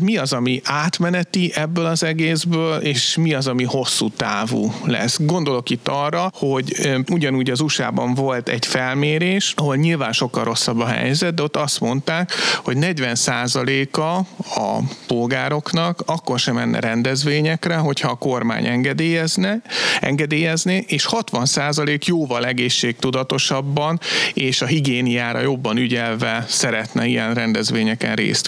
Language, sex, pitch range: Hungarian, male, 125-155 Hz